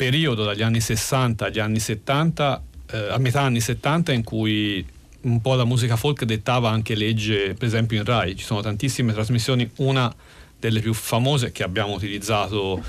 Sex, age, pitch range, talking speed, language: male, 40-59, 105-125 Hz, 170 wpm, Italian